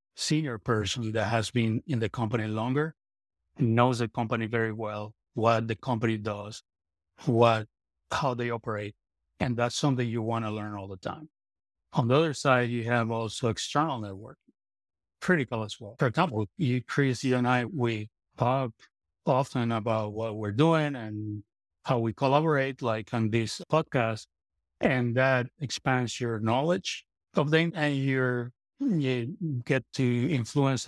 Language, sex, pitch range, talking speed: English, male, 110-130 Hz, 155 wpm